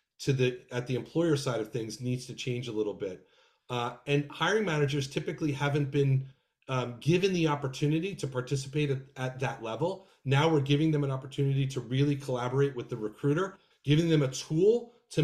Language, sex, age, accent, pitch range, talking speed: English, male, 30-49, American, 130-155 Hz, 190 wpm